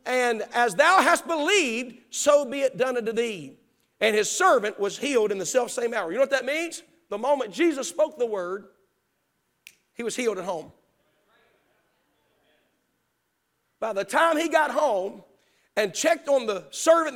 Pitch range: 220-335 Hz